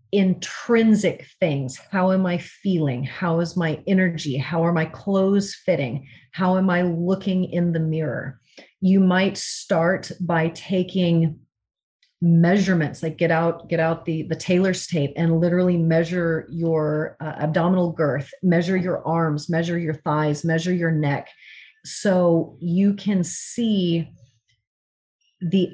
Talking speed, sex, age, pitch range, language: 135 wpm, female, 30-49, 155-185 Hz, English